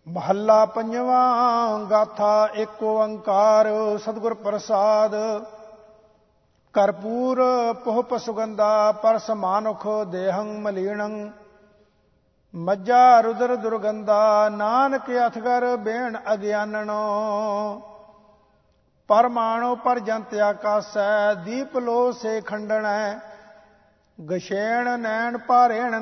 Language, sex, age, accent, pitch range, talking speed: English, male, 50-69, Indian, 210-235 Hz, 70 wpm